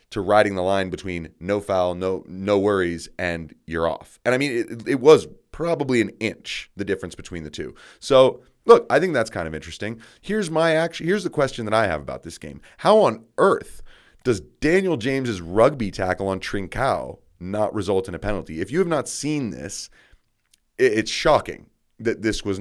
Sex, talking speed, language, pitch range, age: male, 195 wpm, English, 90-120 Hz, 30-49